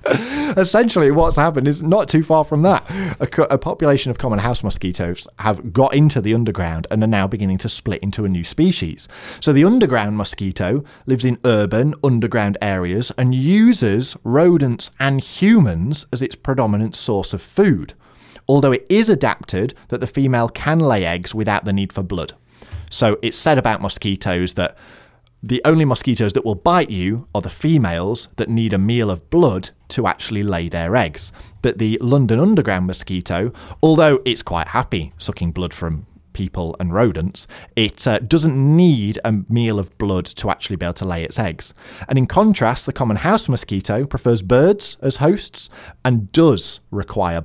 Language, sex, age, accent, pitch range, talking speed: English, male, 20-39, British, 95-140 Hz, 175 wpm